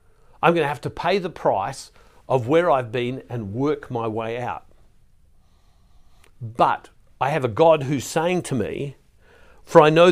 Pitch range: 110-150 Hz